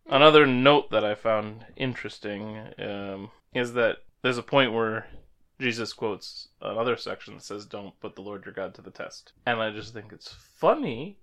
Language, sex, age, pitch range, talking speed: English, male, 20-39, 110-140 Hz, 180 wpm